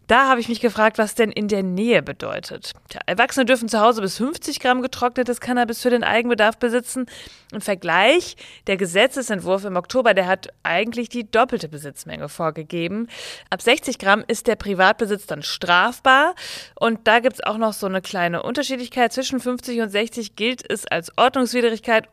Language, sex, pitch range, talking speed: German, female, 200-250 Hz, 170 wpm